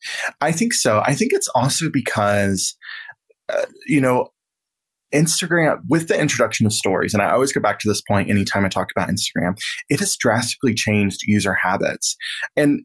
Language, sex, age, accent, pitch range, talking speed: English, male, 20-39, American, 105-135 Hz, 175 wpm